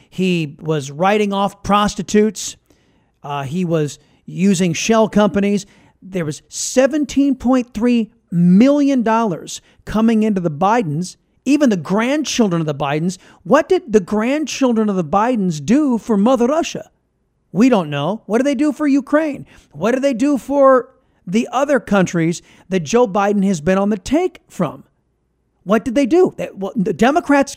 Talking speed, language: 150 wpm, English